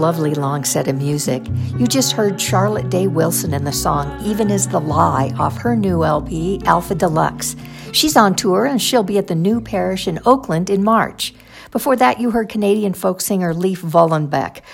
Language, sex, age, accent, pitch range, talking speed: English, female, 60-79, American, 165-210 Hz, 190 wpm